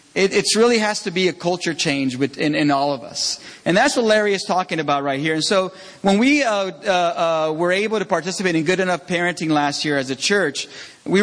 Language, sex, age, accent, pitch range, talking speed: English, male, 40-59, American, 165-215 Hz, 235 wpm